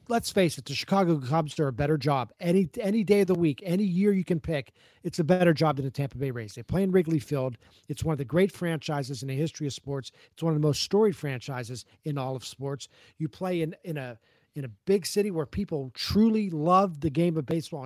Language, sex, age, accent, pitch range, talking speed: English, male, 40-59, American, 145-185 Hz, 250 wpm